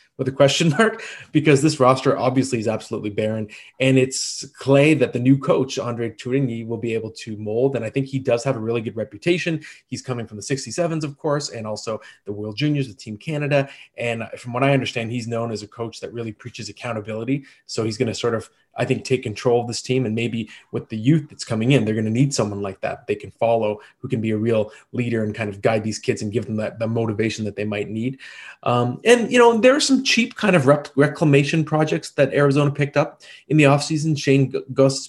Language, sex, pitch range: English, male, 110-140 Hz